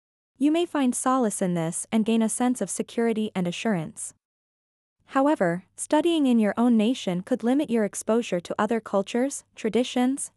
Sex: female